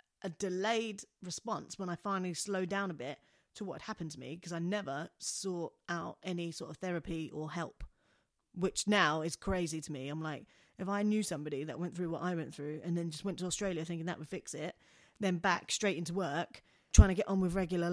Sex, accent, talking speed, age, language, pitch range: female, British, 225 wpm, 30-49, English, 165-195 Hz